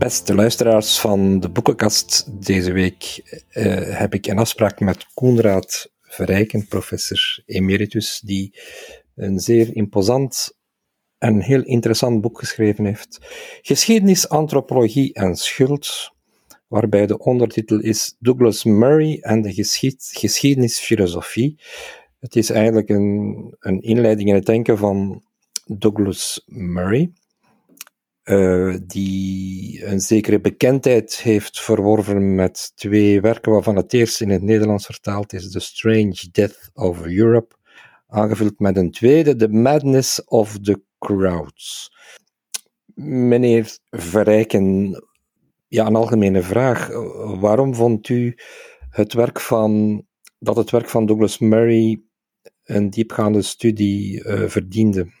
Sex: male